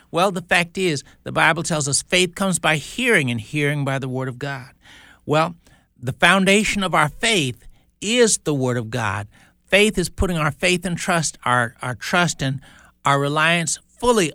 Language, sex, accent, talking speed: English, male, American, 185 wpm